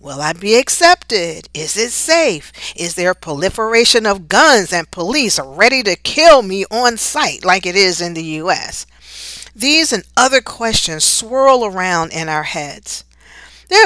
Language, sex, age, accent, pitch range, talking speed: English, female, 50-69, American, 165-260 Hz, 160 wpm